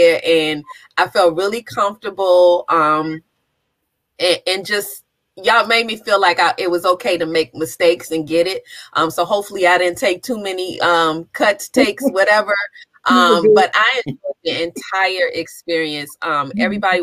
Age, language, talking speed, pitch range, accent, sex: 30-49, English, 160 wpm, 165-225 Hz, American, female